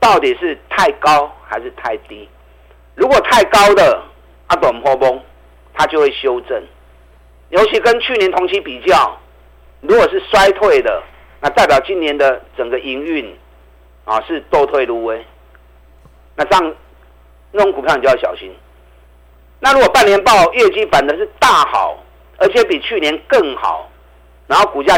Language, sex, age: Chinese, male, 50-69